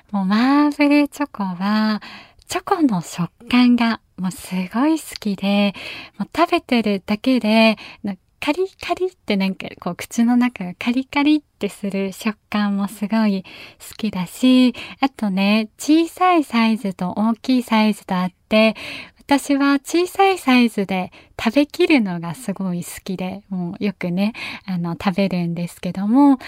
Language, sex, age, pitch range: Japanese, female, 20-39, 200-275 Hz